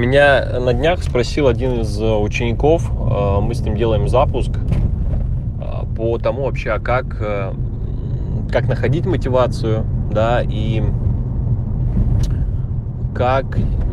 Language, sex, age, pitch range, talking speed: Russian, male, 20-39, 110-120 Hz, 95 wpm